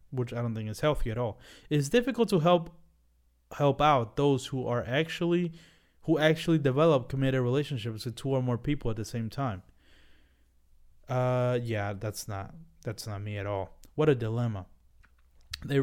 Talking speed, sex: 170 wpm, male